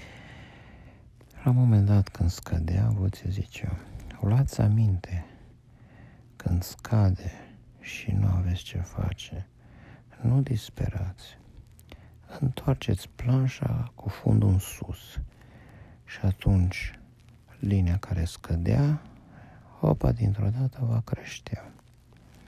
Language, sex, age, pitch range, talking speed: Romanian, male, 50-69, 90-120 Hz, 95 wpm